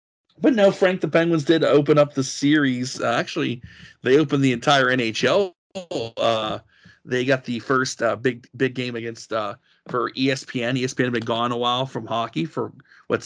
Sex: male